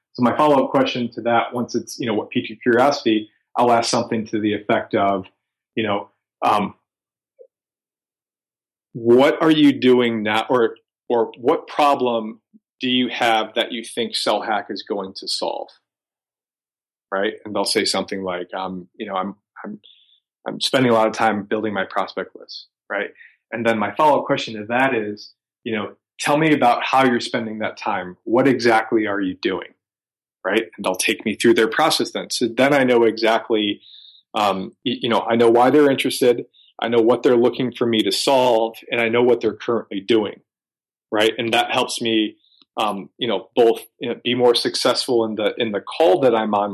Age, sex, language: 30-49, male, English